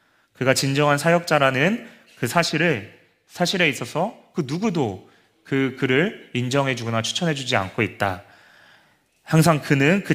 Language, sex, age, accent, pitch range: Korean, male, 30-49, native, 110-135 Hz